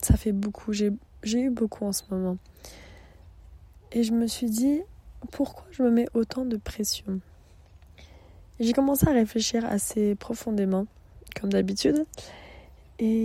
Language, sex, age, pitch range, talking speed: English, female, 20-39, 200-230 Hz, 140 wpm